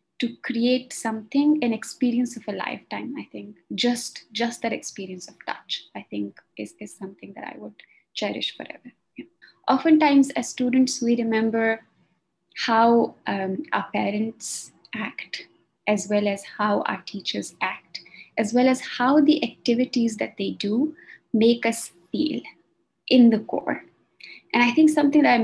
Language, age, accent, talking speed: English, 20-39, Indian, 150 wpm